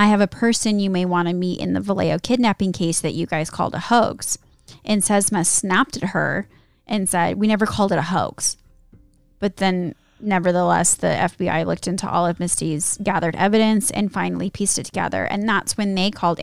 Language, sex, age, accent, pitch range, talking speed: English, female, 10-29, American, 180-210 Hz, 200 wpm